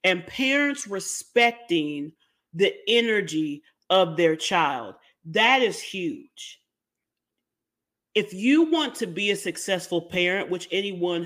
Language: English